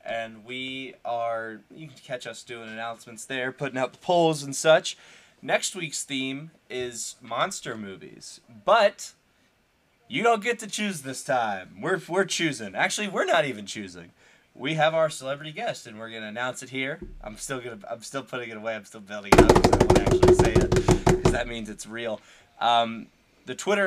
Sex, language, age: male, English, 20-39